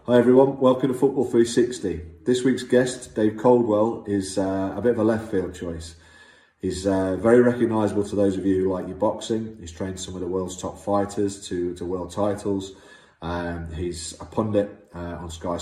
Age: 30-49